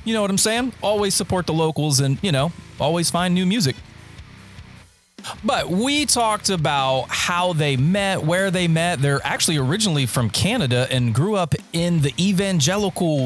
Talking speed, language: 170 wpm, English